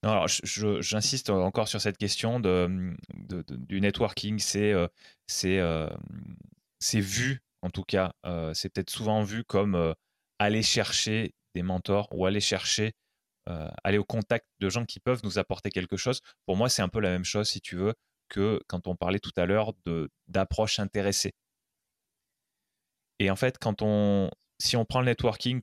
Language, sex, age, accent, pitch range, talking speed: French, male, 20-39, French, 95-110 Hz, 185 wpm